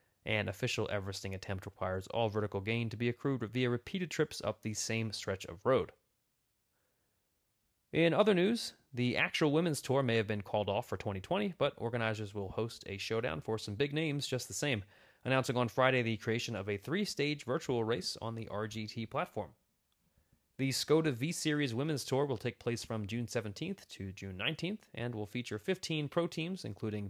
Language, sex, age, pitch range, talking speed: English, male, 30-49, 105-145 Hz, 180 wpm